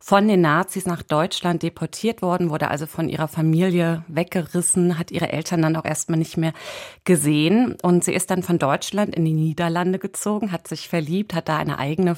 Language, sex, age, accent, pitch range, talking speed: German, female, 30-49, German, 155-190 Hz, 190 wpm